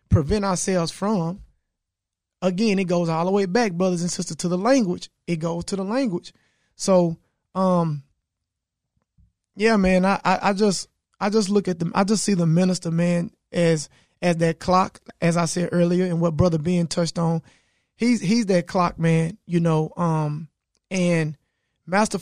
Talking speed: 175 wpm